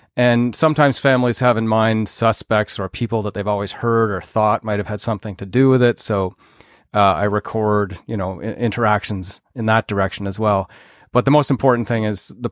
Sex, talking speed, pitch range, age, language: male, 205 wpm, 100-115 Hz, 30-49, English